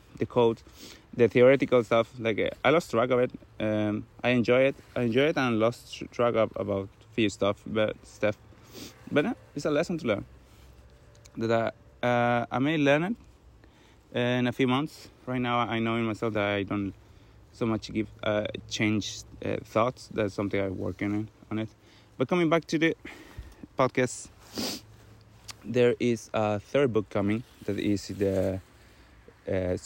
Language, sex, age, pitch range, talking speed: English, male, 30-49, 105-125 Hz, 170 wpm